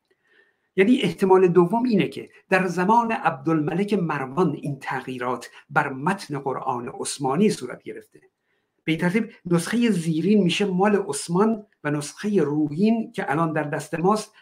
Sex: male